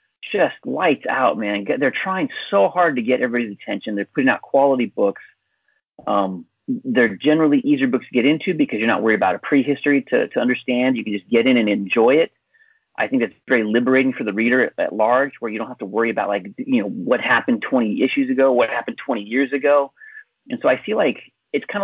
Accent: American